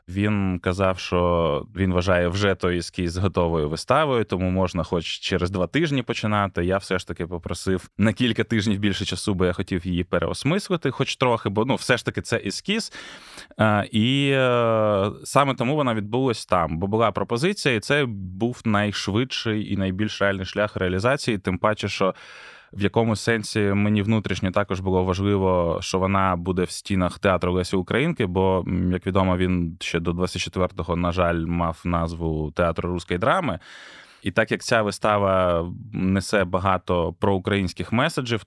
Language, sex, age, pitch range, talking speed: Ukrainian, male, 20-39, 95-115 Hz, 160 wpm